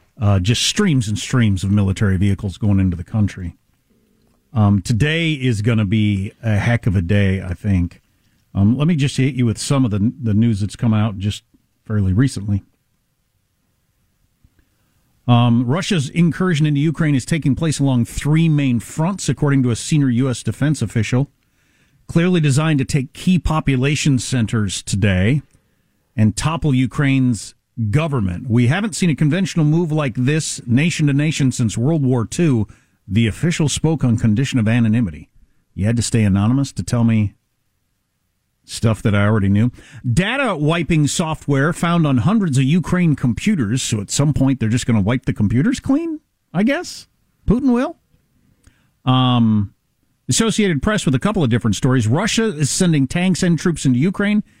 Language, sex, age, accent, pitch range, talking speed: English, male, 50-69, American, 110-150 Hz, 165 wpm